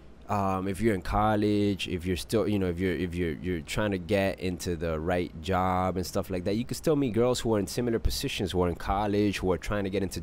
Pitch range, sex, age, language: 90-115 Hz, male, 30-49, English